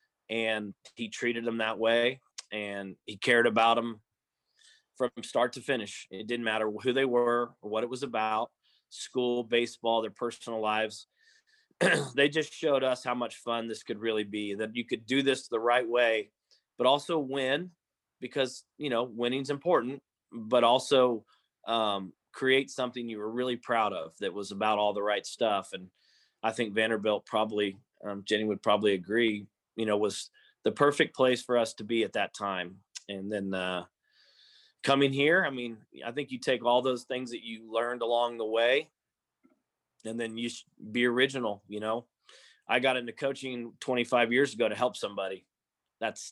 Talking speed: 175 wpm